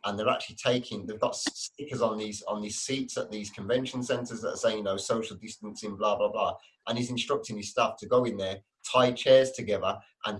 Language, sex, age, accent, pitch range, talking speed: English, male, 20-39, British, 100-115 Hz, 225 wpm